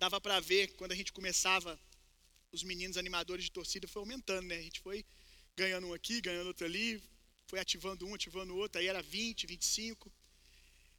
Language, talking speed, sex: Gujarati, 175 wpm, male